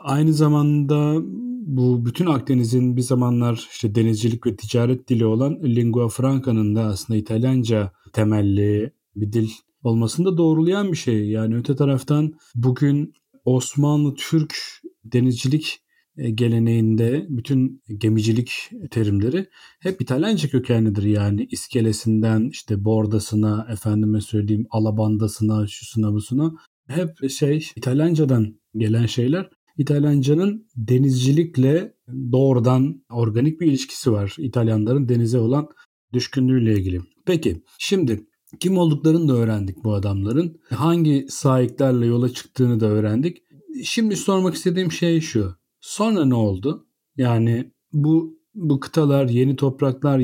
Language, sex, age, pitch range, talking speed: Turkish, male, 40-59, 115-145 Hz, 110 wpm